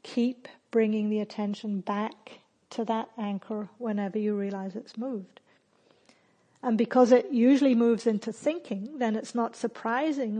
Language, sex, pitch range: English, female, 210-240 Hz